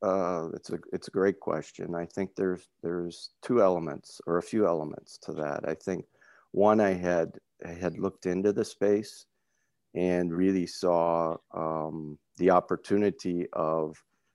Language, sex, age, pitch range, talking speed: English, male, 50-69, 85-95 Hz, 155 wpm